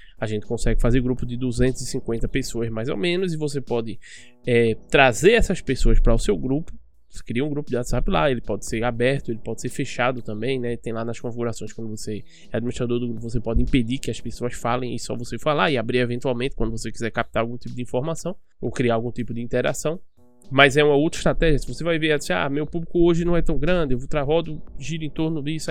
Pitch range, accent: 120-150 Hz, Brazilian